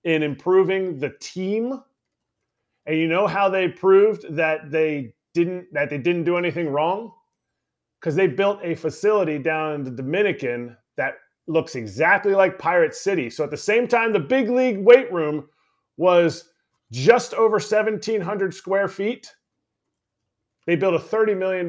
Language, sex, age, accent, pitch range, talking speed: English, male, 30-49, American, 150-205 Hz, 155 wpm